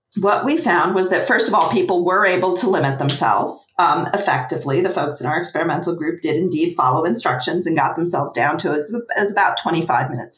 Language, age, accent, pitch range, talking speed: English, 40-59, American, 155-210 Hz, 210 wpm